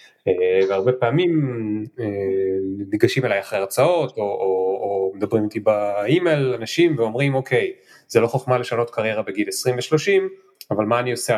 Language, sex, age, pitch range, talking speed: Hebrew, male, 30-49, 110-145 Hz, 160 wpm